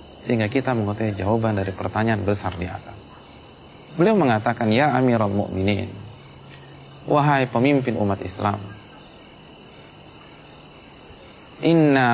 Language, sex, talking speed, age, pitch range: Malay, male, 95 wpm, 30-49, 105-150 Hz